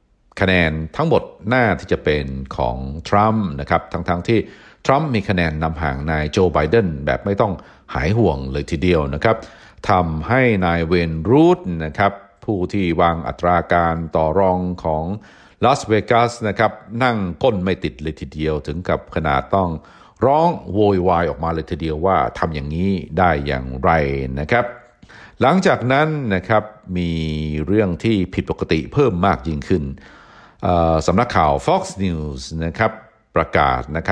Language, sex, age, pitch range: Thai, male, 60-79, 75-105 Hz